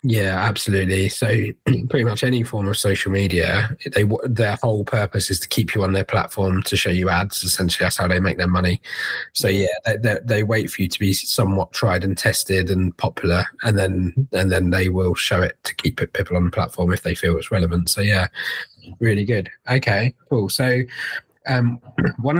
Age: 20-39